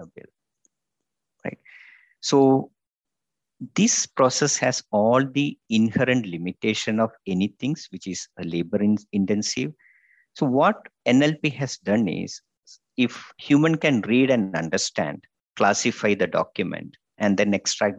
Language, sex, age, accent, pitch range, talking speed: English, male, 50-69, Indian, 100-130 Hz, 120 wpm